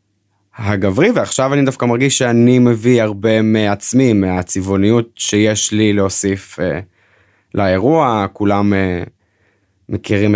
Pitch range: 95-110 Hz